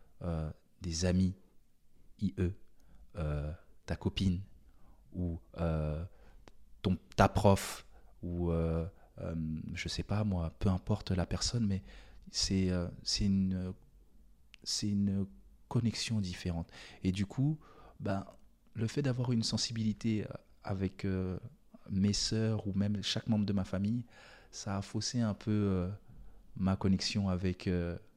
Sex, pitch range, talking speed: male, 90-110 Hz, 130 wpm